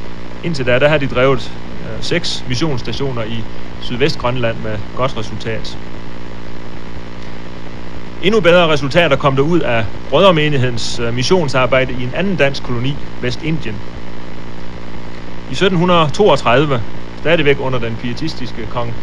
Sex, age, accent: male, 30-49, native